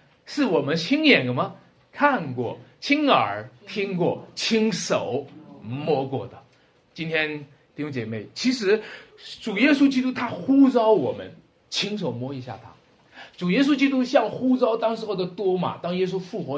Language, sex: Chinese, male